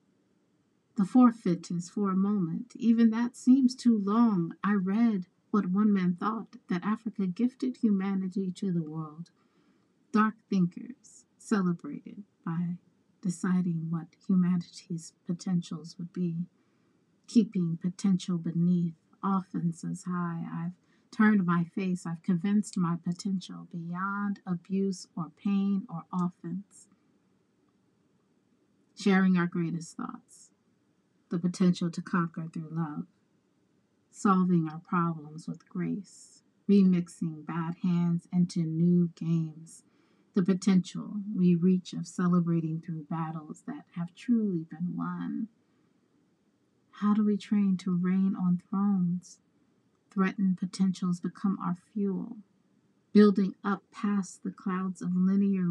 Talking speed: 115 wpm